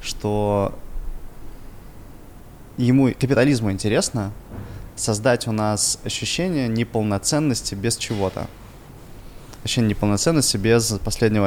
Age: 20-39